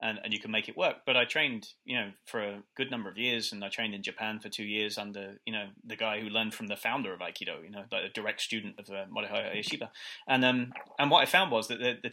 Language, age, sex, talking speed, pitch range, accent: English, 20-39, male, 285 wpm, 105-125 Hz, British